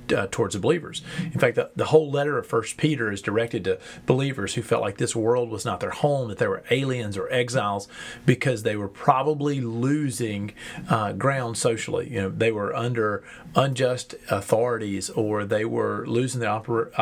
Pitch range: 110-130 Hz